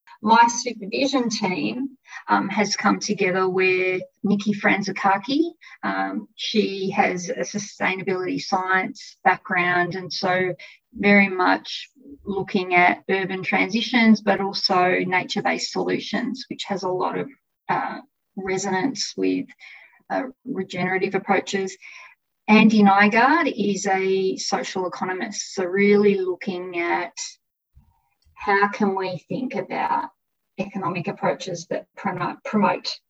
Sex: female